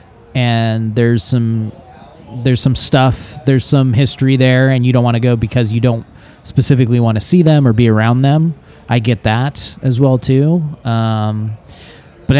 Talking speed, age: 175 wpm, 20-39